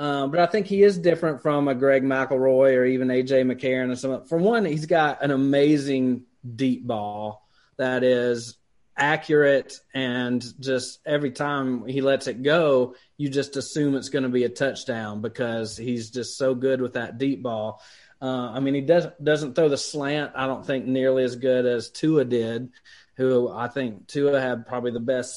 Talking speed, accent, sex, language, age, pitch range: 185 wpm, American, male, English, 30-49, 125-145 Hz